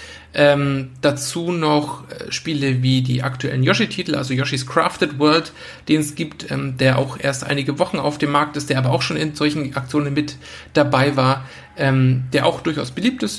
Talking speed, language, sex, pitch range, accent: 185 wpm, German, male, 130-150 Hz, German